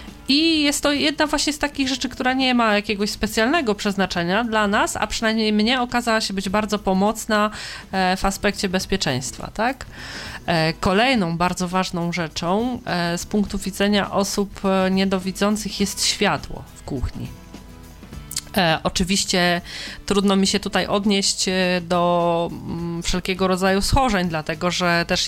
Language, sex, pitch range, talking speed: Polish, female, 175-210 Hz, 130 wpm